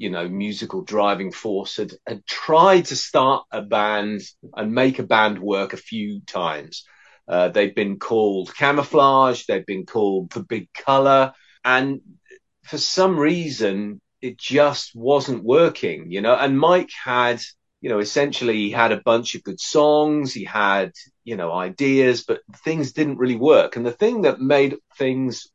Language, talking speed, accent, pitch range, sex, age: English, 165 wpm, British, 115-145 Hz, male, 30-49